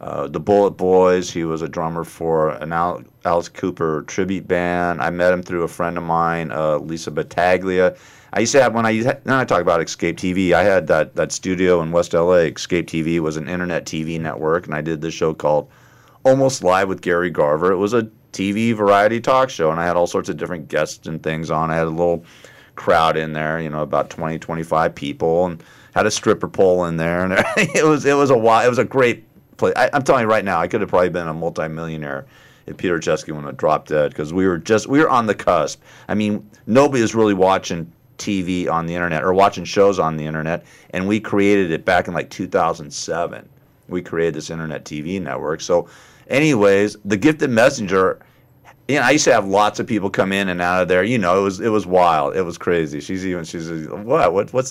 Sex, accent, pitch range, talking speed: male, American, 80-100 Hz, 235 wpm